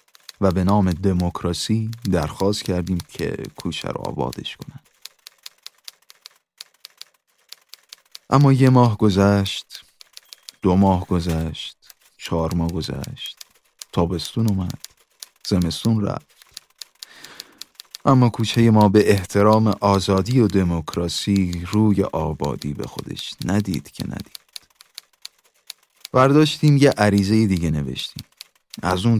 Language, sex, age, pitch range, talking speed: Persian, male, 30-49, 90-110 Hz, 95 wpm